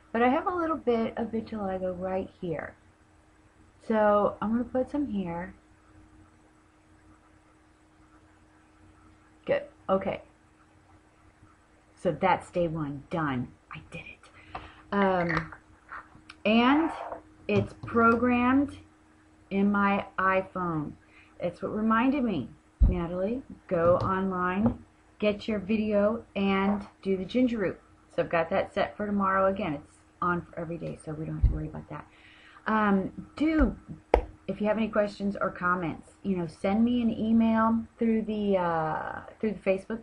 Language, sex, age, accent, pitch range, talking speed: English, female, 30-49, American, 170-220 Hz, 135 wpm